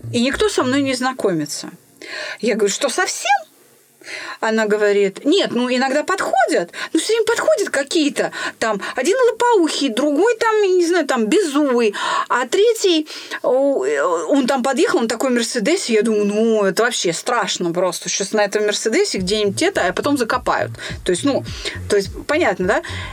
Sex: female